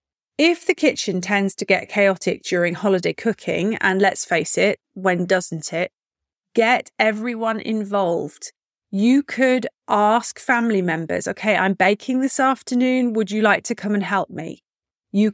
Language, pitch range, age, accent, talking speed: English, 190-250 Hz, 30-49, British, 155 wpm